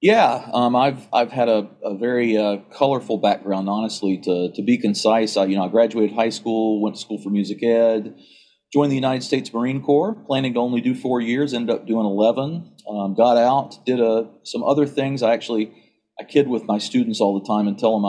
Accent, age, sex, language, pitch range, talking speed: American, 40-59, male, English, 105-125 Hz, 220 wpm